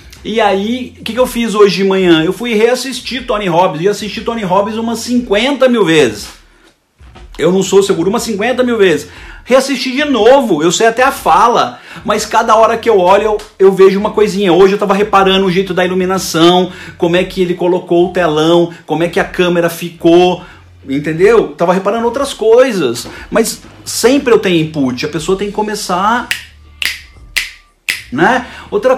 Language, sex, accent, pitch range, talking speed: Portuguese, male, Brazilian, 180-225 Hz, 180 wpm